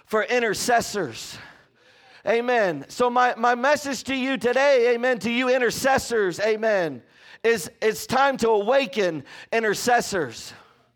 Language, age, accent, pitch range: English, 40-59, American, 210-270 Hz